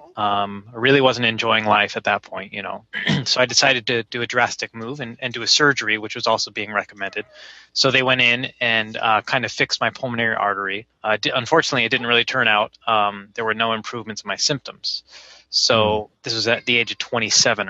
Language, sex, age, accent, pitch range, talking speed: English, male, 20-39, American, 105-125 Hz, 215 wpm